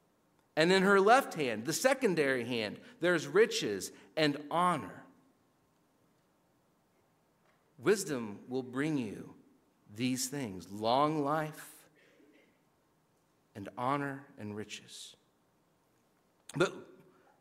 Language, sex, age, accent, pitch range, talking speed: English, male, 50-69, American, 130-185 Hz, 85 wpm